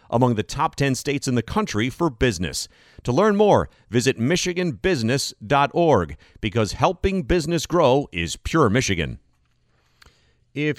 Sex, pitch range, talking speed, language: male, 100-135 Hz, 130 wpm, English